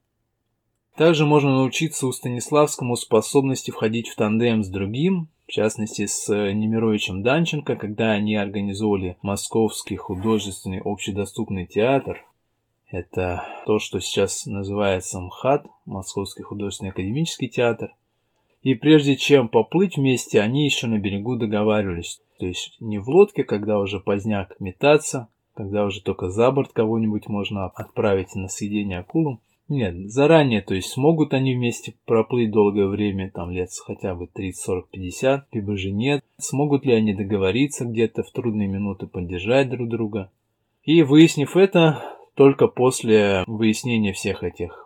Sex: male